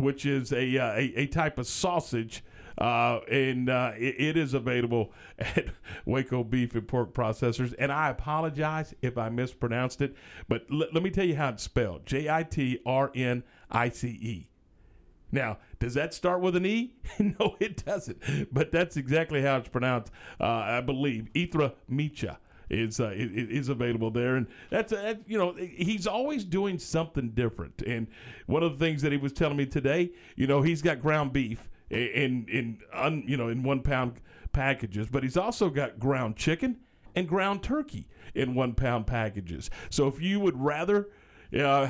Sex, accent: male, American